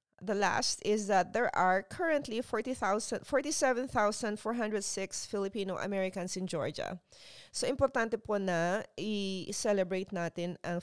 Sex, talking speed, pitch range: female, 110 wpm, 175-225 Hz